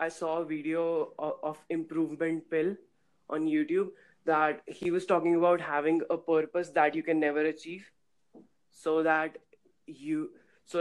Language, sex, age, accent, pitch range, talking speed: English, female, 20-39, Indian, 155-180 Hz, 145 wpm